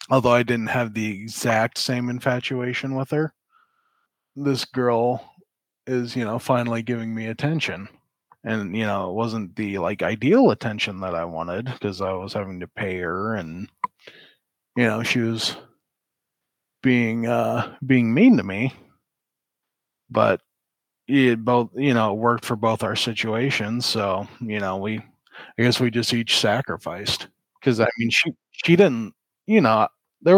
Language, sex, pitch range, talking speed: English, male, 105-125 Hz, 155 wpm